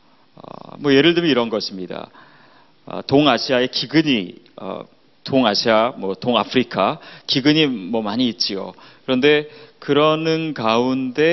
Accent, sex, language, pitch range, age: native, male, Korean, 130-200 Hz, 30-49